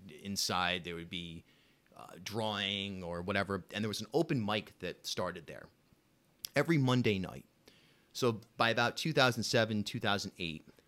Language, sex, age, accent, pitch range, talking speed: English, male, 30-49, American, 95-120 Hz, 140 wpm